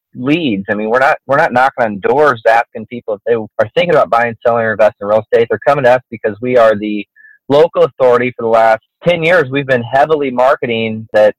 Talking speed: 230 wpm